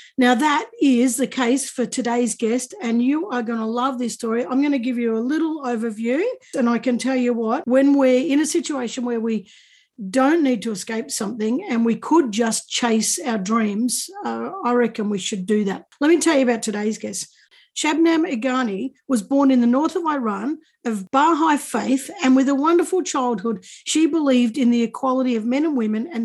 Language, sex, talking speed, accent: English, female, 205 wpm, Australian